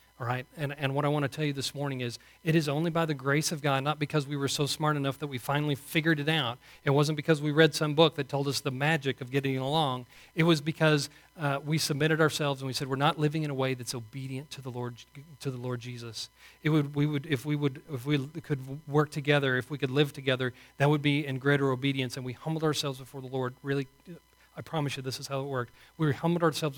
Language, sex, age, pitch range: English, male, 40-59, 135-155 Hz